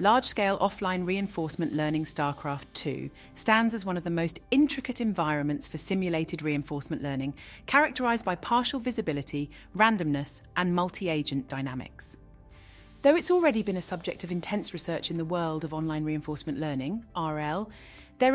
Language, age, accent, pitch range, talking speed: English, 30-49, British, 145-195 Hz, 145 wpm